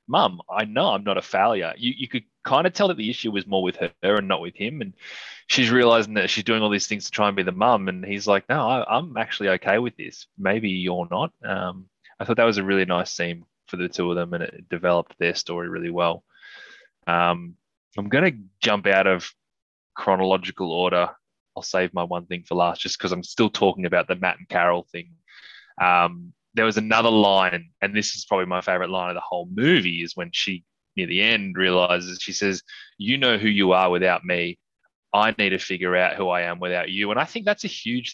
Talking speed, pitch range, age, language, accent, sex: 230 wpm, 90-110 Hz, 20-39, English, Australian, male